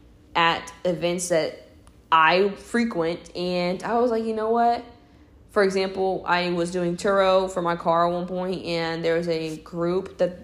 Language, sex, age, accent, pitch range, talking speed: English, female, 10-29, American, 170-210 Hz, 170 wpm